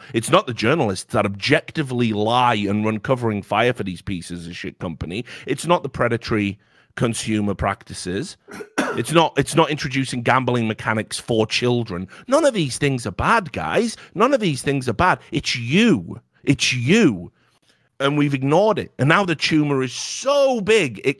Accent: British